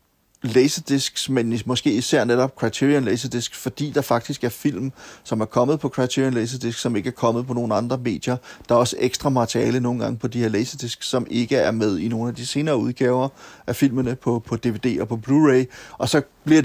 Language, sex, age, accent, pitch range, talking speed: Danish, male, 30-49, native, 120-135 Hz, 210 wpm